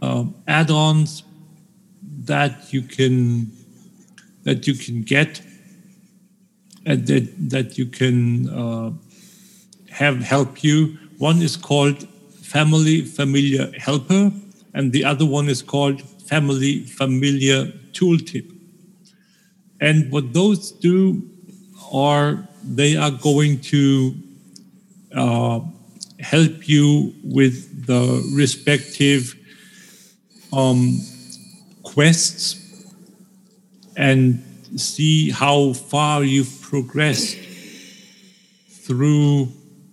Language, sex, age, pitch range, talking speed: English, male, 50-69, 140-190 Hz, 85 wpm